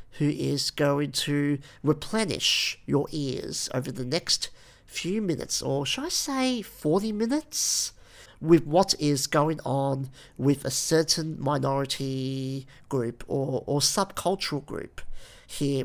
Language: English